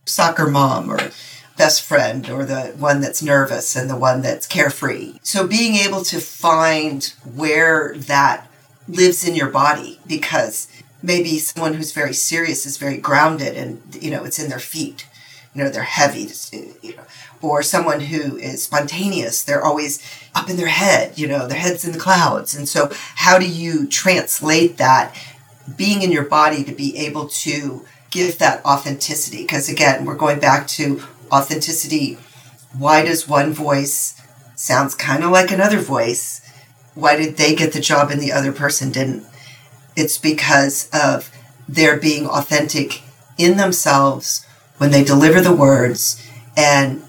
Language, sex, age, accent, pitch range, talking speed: English, female, 40-59, American, 135-160 Hz, 160 wpm